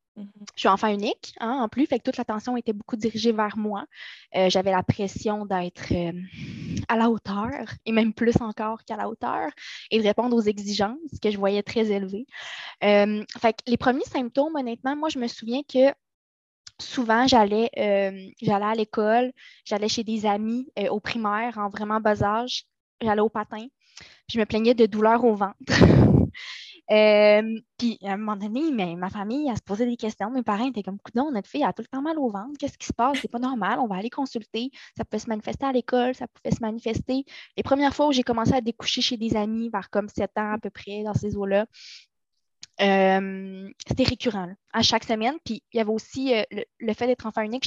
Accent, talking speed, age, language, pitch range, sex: Canadian, 215 wpm, 20-39, French, 210-250 Hz, female